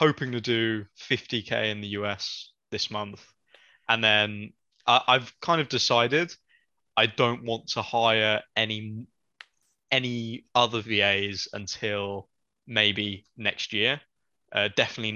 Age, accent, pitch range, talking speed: 20-39, British, 105-120 Hz, 120 wpm